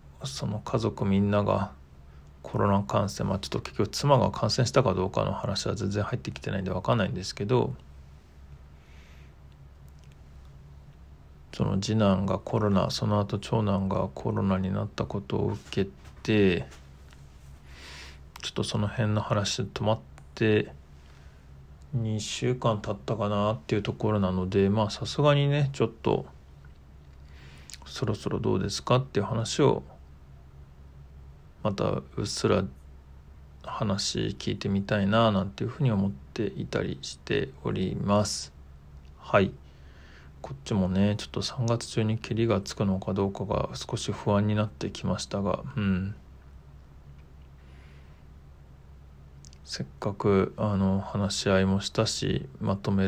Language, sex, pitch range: Japanese, male, 70-105 Hz